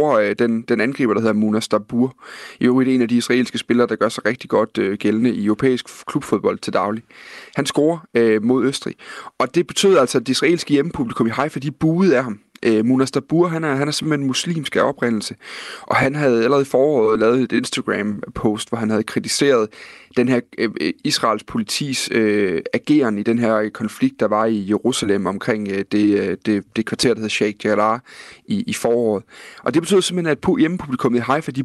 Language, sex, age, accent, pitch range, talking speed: Danish, male, 30-49, native, 110-145 Hz, 205 wpm